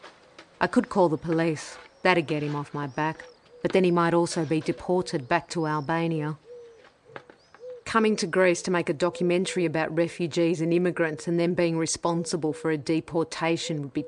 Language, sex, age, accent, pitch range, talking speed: English, female, 40-59, Australian, 160-185 Hz, 175 wpm